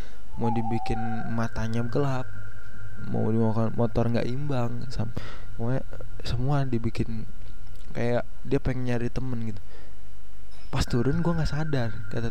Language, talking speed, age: Indonesian, 115 wpm, 20-39